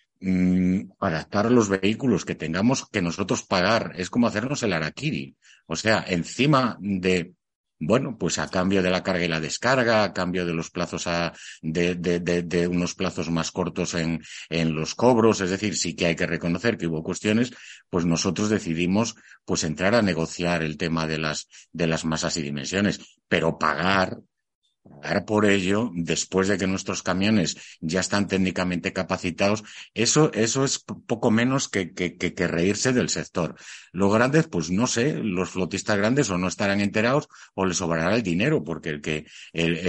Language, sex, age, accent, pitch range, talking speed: Spanish, male, 50-69, Spanish, 85-105 Hz, 180 wpm